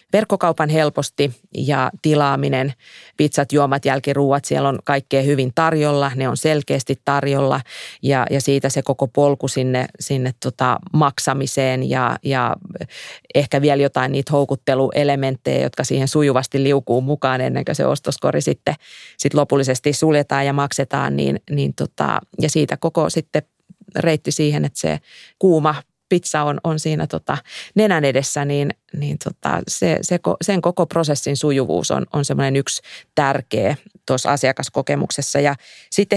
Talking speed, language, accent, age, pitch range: 145 wpm, Finnish, native, 30-49, 135-155 Hz